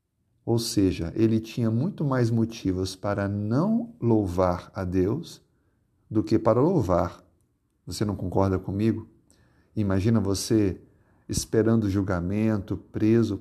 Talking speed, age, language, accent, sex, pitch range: 110 wpm, 50-69, Portuguese, Brazilian, male, 100-120 Hz